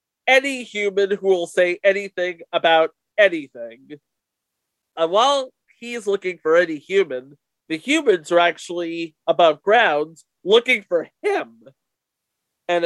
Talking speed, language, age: 115 wpm, English, 40-59